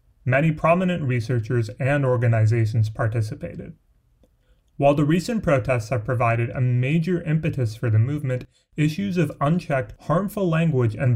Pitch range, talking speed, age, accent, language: 120-160 Hz, 130 wpm, 30-49, American, English